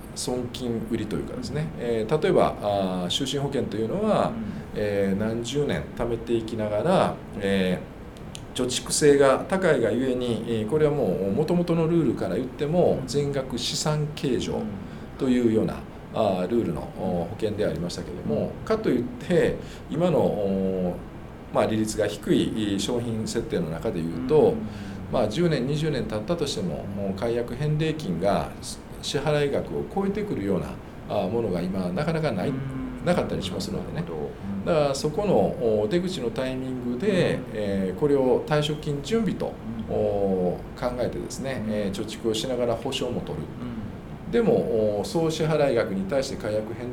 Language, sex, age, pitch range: Japanese, male, 50-69, 105-145 Hz